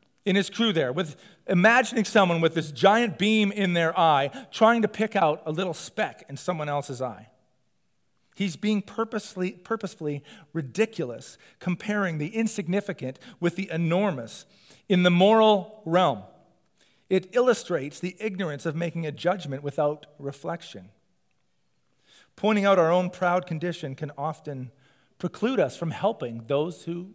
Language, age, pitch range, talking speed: English, 40-59, 145-200 Hz, 140 wpm